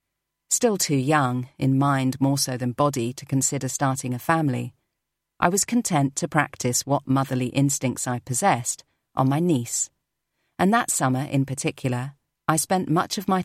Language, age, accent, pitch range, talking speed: English, 40-59, British, 125-150 Hz, 165 wpm